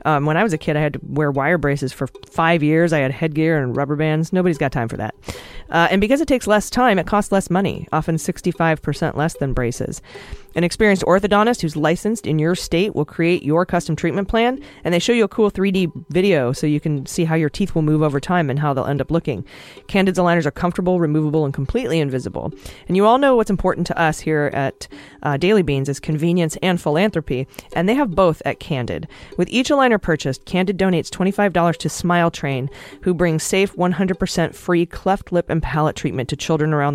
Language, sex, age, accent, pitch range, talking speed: English, female, 30-49, American, 150-190 Hz, 220 wpm